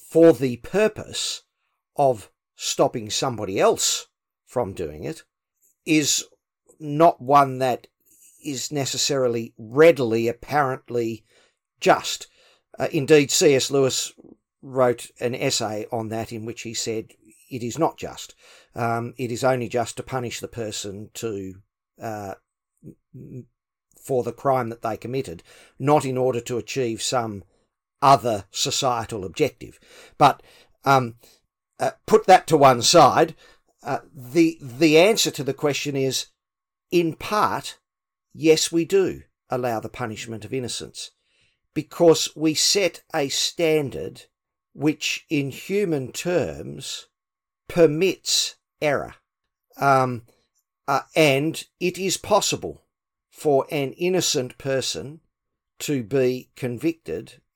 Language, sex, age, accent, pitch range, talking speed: English, male, 50-69, Australian, 120-155 Hz, 120 wpm